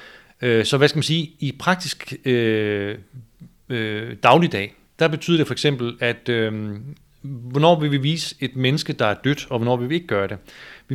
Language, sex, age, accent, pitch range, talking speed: Danish, male, 30-49, native, 110-140 Hz, 185 wpm